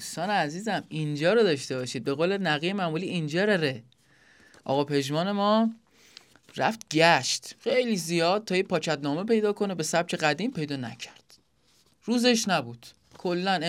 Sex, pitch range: male, 155-220 Hz